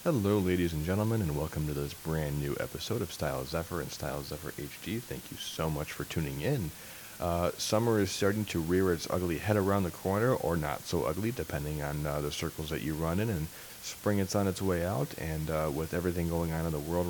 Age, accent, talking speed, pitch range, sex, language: 30-49, American, 230 wpm, 80-95 Hz, male, English